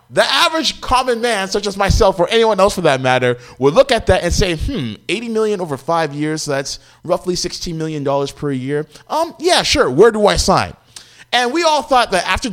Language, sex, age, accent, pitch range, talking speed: English, male, 20-39, American, 125-190 Hz, 215 wpm